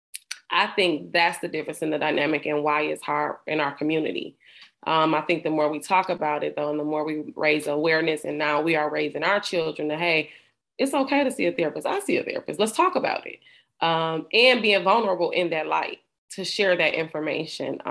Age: 20-39